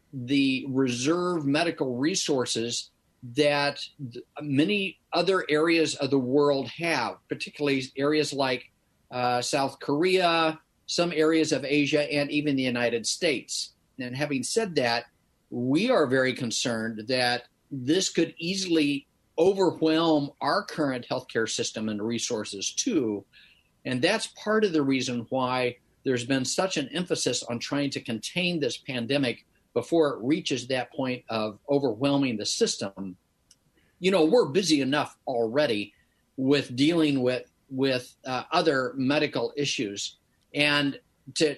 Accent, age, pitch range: American, 50-69, 125-155 Hz